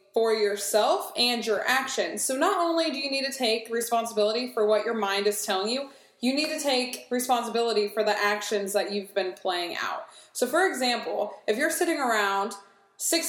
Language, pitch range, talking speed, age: English, 210-270 Hz, 190 wpm, 20-39